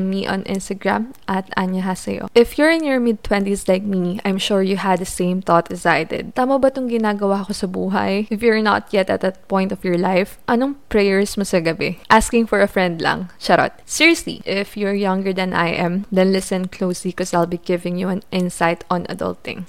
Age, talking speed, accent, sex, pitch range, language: 20-39, 215 wpm, native, female, 185-210 Hz, Filipino